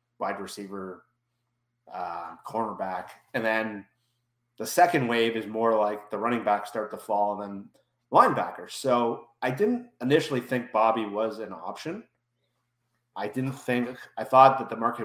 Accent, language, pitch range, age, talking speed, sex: American, English, 110-135 Hz, 30-49, 150 wpm, male